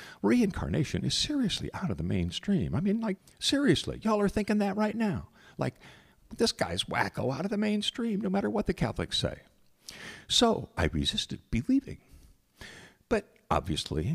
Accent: American